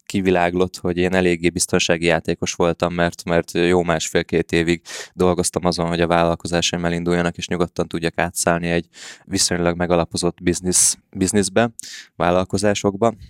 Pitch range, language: 85-100 Hz, Hungarian